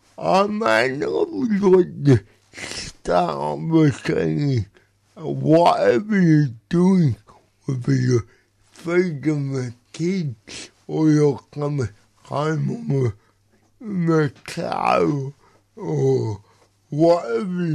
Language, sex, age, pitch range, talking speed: English, male, 60-79, 125-155 Hz, 100 wpm